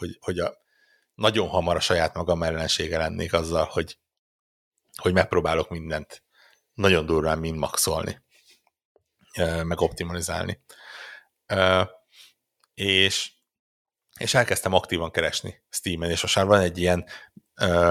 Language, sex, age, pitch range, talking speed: Hungarian, male, 60-79, 85-95 Hz, 115 wpm